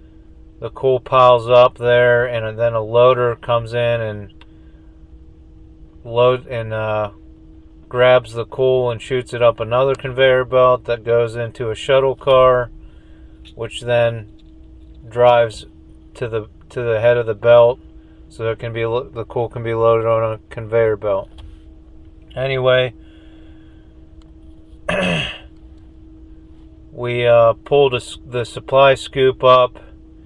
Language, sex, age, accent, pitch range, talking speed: English, male, 40-59, American, 80-125 Hz, 125 wpm